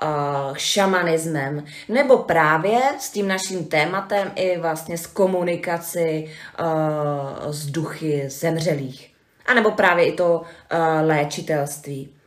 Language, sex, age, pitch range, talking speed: Czech, female, 30-49, 160-200 Hz, 105 wpm